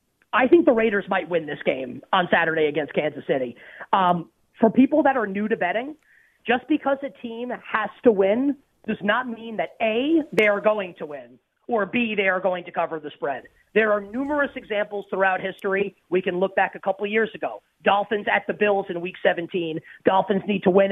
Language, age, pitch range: English, 30-49, 190-235 Hz